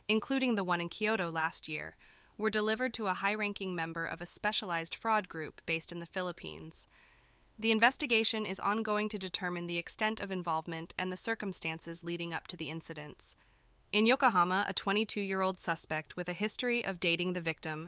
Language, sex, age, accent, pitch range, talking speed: English, female, 20-39, American, 175-215 Hz, 175 wpm